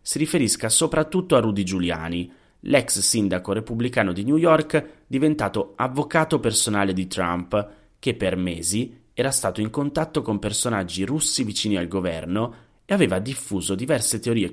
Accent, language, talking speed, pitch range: native, Italian, 145 wpm, 95-135 Hz